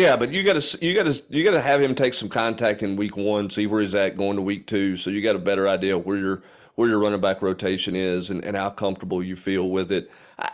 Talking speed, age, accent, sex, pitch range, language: 285 wpm, 40-59, American, male, 105-125 Hz, English